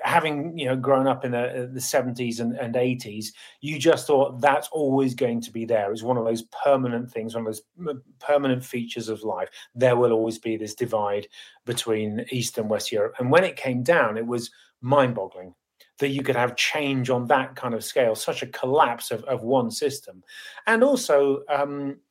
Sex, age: male, 30-49